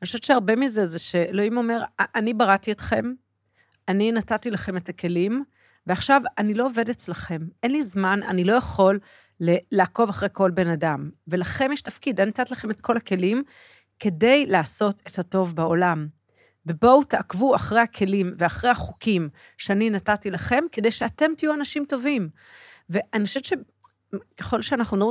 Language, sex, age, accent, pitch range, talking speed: Hebrew, female, 40-59, native, 180-250 Hz, 155 wpm